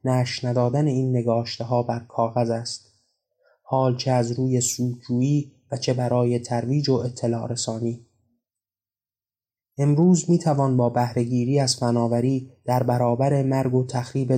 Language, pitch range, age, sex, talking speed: Persian, 115-130 Hz, 20-39, male, 135 wpm